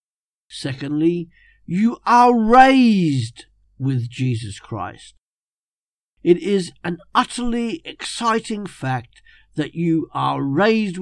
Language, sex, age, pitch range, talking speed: English, male, 50-69, 125-210 Hz, 95 wpm